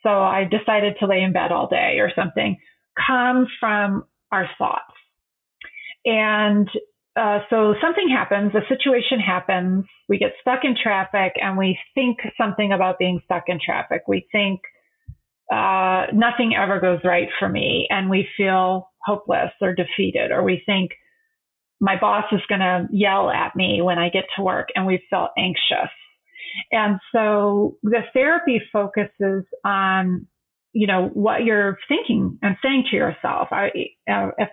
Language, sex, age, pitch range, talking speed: English, female, 30-49, 185-225 Hz, 155 wpm